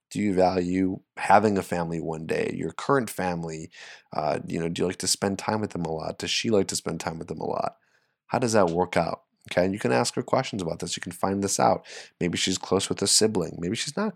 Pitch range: 85-95 Hz